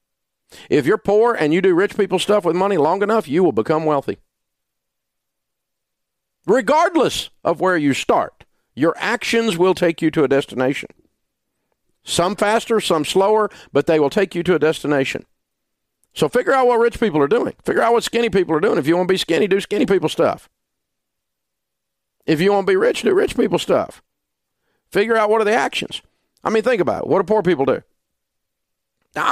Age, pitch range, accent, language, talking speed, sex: 50-69, 160-235 Hz, American, English, 190 wpm, male